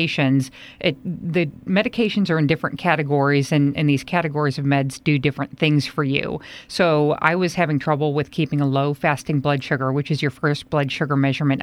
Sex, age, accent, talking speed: female, 40-59, American, 185 wpm